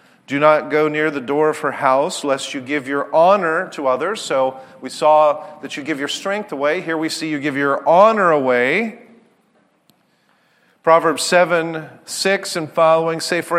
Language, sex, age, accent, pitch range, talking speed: English, male, 50-69, American, 125-170 Hz, 175 wpm